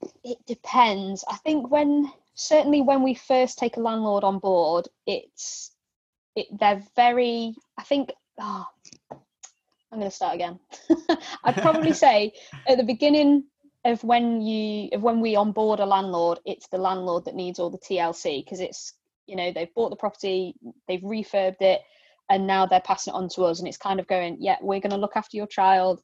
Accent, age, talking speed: British, 20-39, 185 wpm